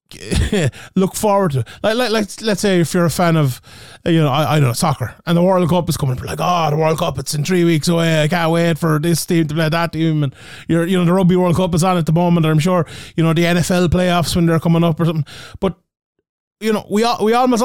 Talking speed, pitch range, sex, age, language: 280 wpm, 150-195 Hz, male, 20-39, English